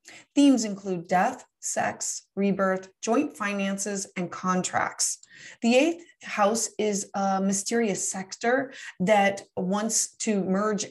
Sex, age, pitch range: female, 30-49, 185-235 Hz